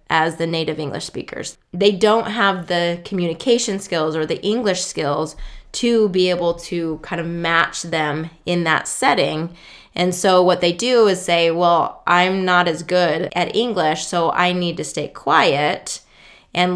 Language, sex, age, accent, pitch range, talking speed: English, female, 20-39, American, 170-195 Hz, 170 wpm